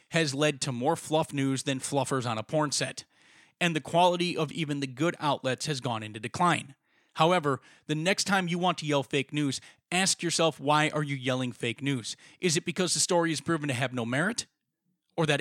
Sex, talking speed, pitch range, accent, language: male, 215 wpm, 130-170 Hz, American, English